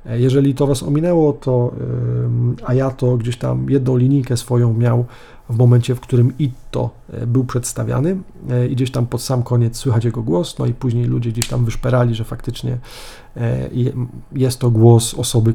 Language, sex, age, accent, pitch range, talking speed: Polish, male, 40-59, native, 120-130 Hz, 160 wpm